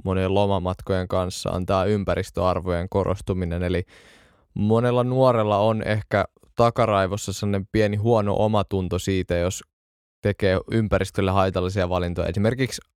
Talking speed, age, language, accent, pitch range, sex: 110 wpm, 20-39, Finnish, native, 90-105 Hz, male